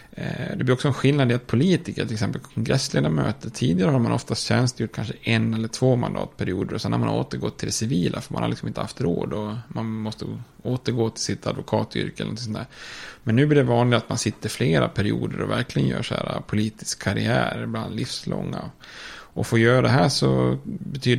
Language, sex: Swedish, male